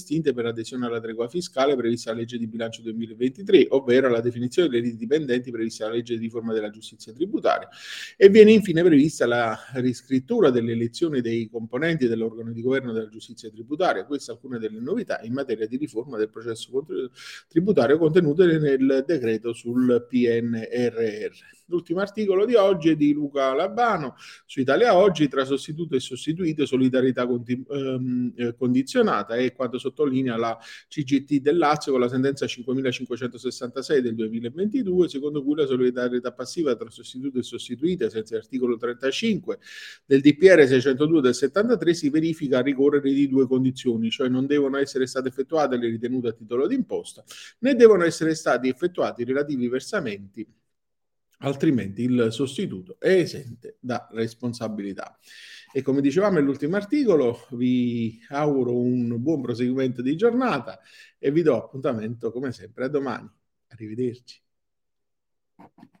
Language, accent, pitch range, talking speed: Italian, native, 120-160 Hz, 145 wpm